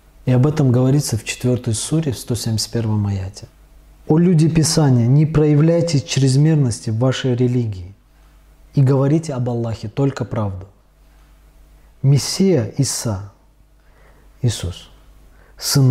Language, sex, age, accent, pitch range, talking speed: Russian, male, 20-39, native, 105-140 Hz, 110 wpm